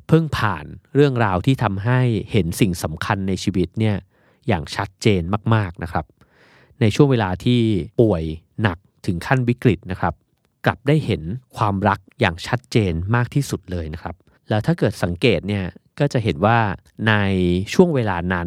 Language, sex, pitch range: Thai, male, 90-120 Hz